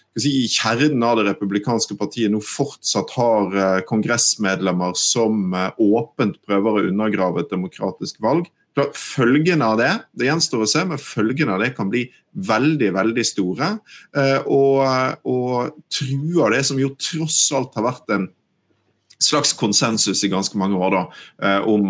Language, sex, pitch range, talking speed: English, male, 95-125 Hz, 145 wpm